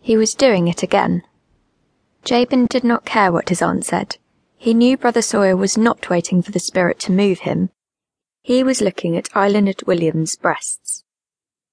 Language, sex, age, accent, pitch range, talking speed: English, female, 20-39, British, 180-225 Hz, 170 wpm